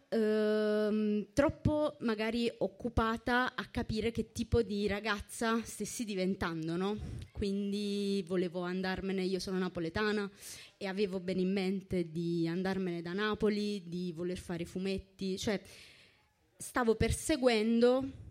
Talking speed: 115 wpm